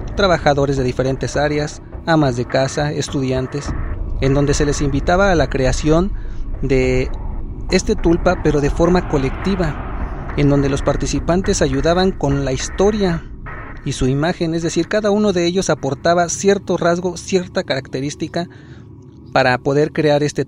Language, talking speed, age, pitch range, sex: Spanish, 145 wpm, 40-59, 125-160 Hz, male